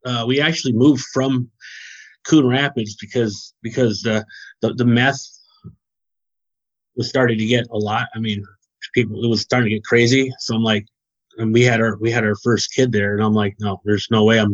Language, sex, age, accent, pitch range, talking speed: English, male, 30-49, American, 110-135 Hz, 200 wpm